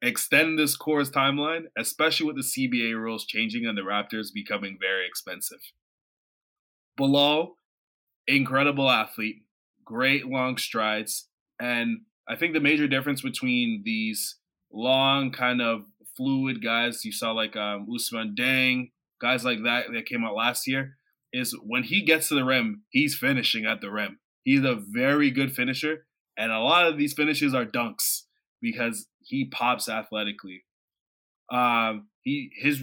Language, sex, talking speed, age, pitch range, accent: English, male, 150 wpm, 20-39, 120-165 Hz, American